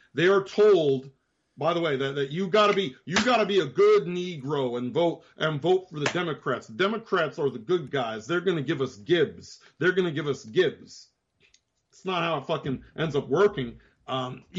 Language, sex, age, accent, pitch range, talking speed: English, male, 40-59, American, 135-175 Hz, 195 wpm